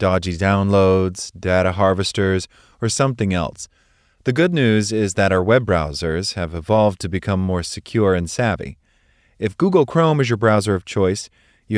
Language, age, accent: English, 30-49, American